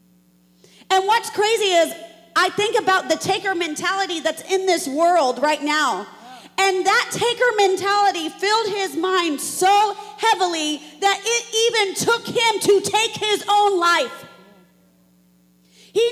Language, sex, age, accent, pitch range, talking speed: English, female, 40-59, American, 300-385 Hz, 135 wpm